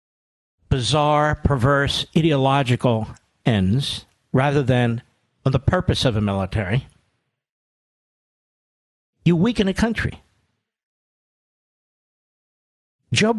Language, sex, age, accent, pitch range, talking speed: English, male, 50-69, American, 120-170 Hz, 75 wpm